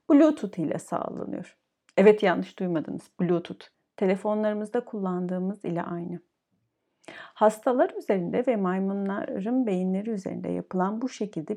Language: Turkish